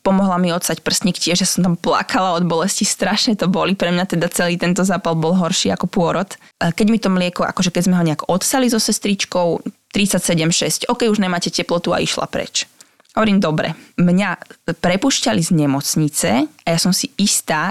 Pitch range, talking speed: 165-195 Hz, 190 wpm